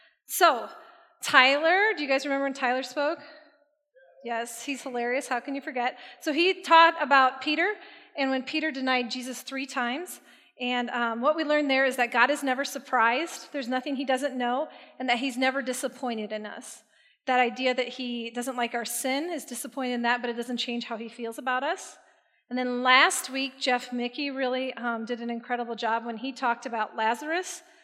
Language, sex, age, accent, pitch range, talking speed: English, female, 30-49, American, 240-285 Hz, 195 wpm